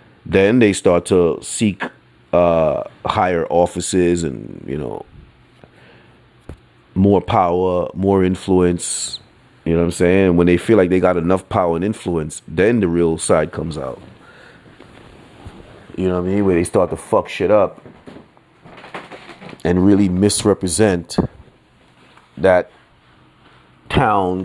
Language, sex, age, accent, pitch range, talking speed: English, male, 30-49, American, 90-105 Hz, 130 wpm